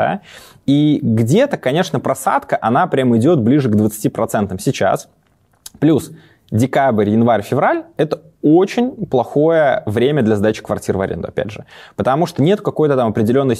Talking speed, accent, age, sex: 140 wpm, native, 20-39, male